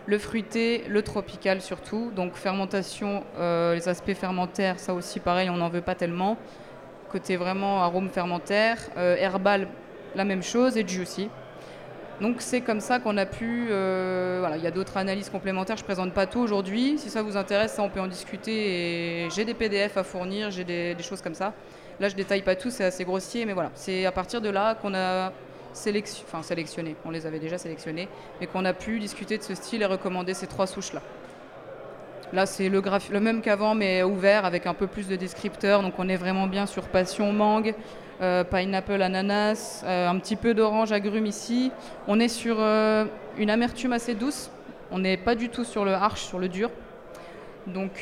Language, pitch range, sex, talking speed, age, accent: French, 185-215 Hz, female, 205 wpm, 20-39, French